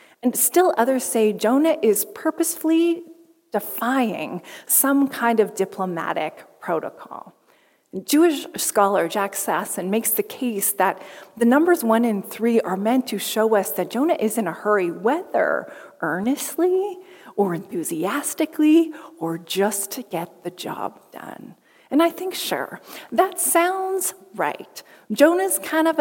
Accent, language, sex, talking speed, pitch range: American, English, female, 135 wpm, 200-320 Hz